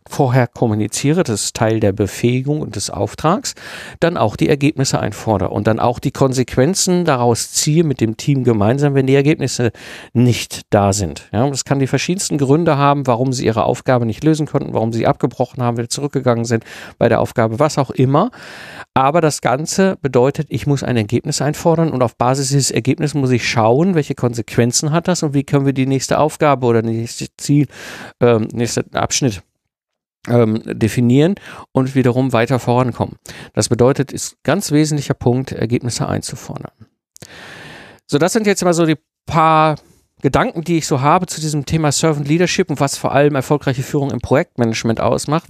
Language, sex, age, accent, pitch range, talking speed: German, male, 50-69, German, 120-150 Hz, 180 wpm